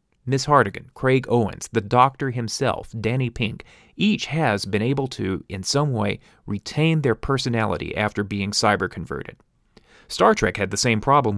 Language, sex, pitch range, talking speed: English, male, 105-135 Hz, 155 wpm